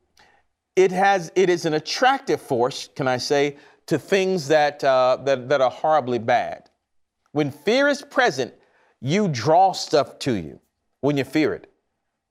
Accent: American